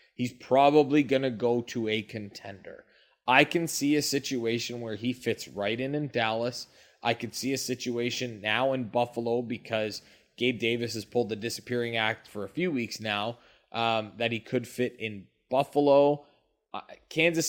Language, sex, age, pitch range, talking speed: English, male, 20-39, 115-140 Hz, 170 wpm